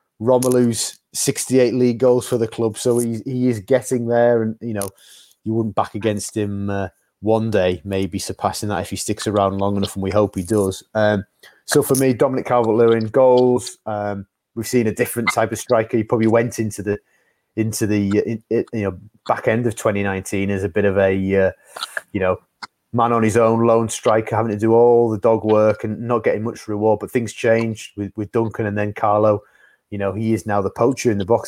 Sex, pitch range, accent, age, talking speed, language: male, 100-115 Hz, British, 30-49, 215 wpm, English